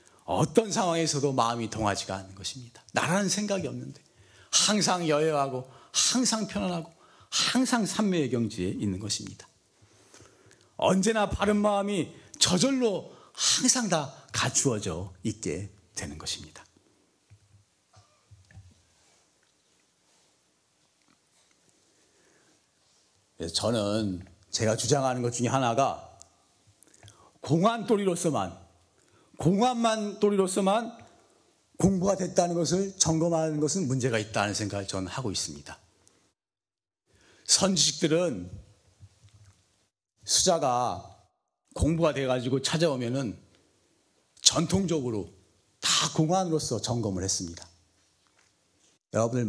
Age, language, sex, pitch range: 40-59, Korean, male, 100-165 Hz